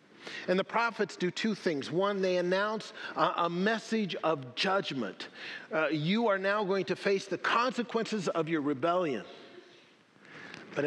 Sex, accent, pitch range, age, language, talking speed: male, American, 140-190 Hz, 50-69, English, 150 wpm